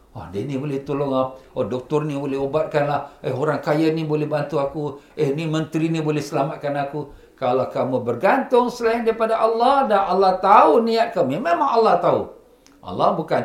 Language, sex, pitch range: Malay, male, 165-235 Hz